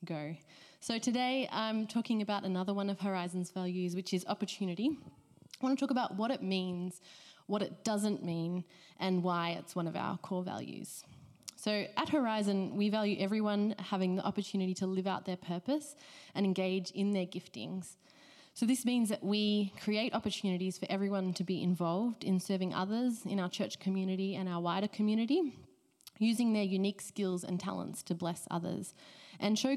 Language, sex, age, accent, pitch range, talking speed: English, female, 20-39, Australian, 180-210 Hz, 175 wpm